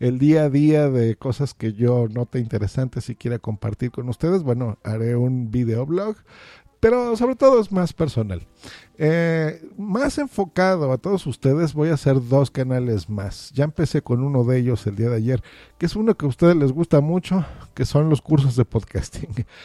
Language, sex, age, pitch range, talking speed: Spanish, male, 50-69, 120-170 Hz, 190 wpm